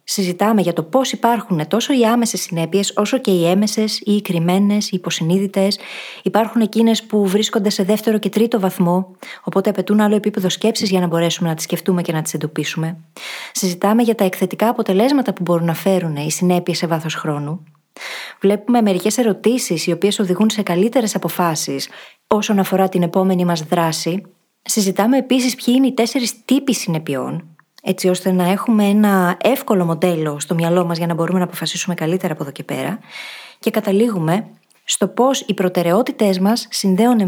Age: 20-39